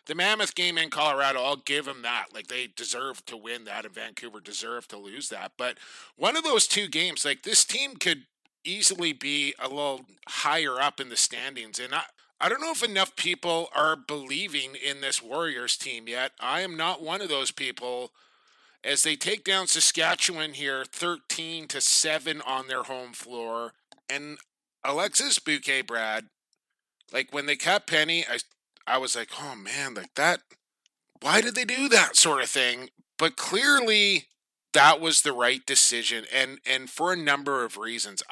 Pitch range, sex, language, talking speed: 125-165 Hz, male, English, 180 wpm